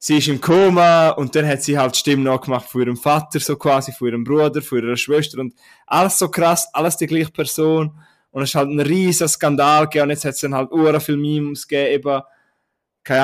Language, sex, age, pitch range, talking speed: German, male, 20-39, 135-155 Hz, 230 wpm